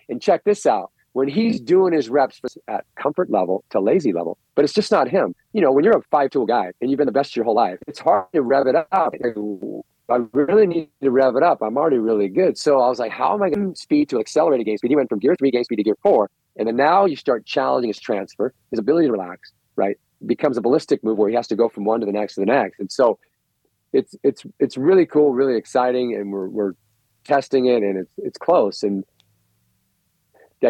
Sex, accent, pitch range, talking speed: male, American, 115-165 Hz, 250 wpm